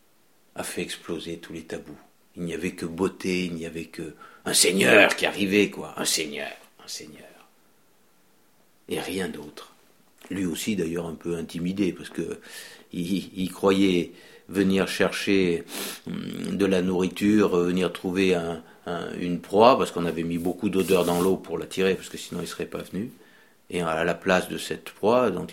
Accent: French